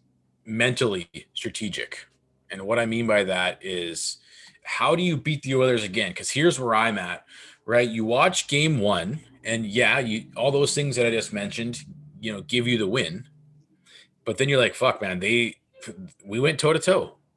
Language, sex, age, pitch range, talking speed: English, male, 20-39, 105-140 Hz, 185 wpm